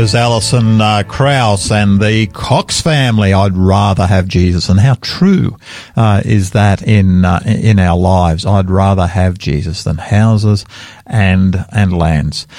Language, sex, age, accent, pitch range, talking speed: English, male, 50-69, Australian, 100-130 Hz, 150 wpm